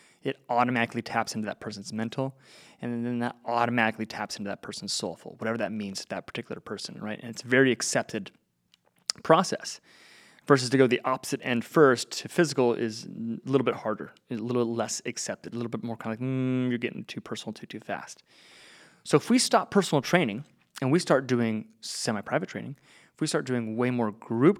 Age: 30-49